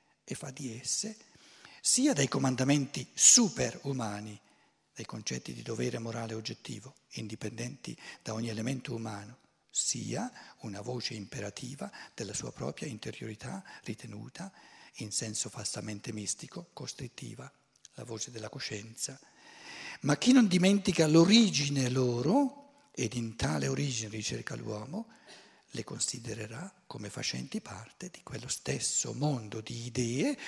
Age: 50-69